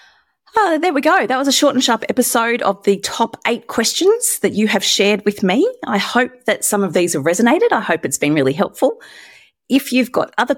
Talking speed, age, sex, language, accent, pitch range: 235 wpm, 30-49, female, English, Australian, 150-230 Hz